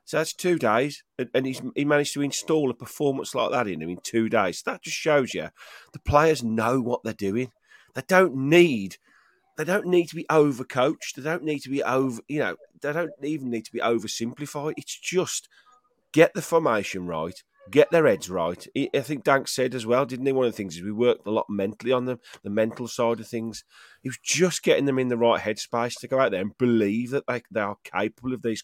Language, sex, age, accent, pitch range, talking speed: English, male, 40-59, British, 115-160 Hz, 230 wpm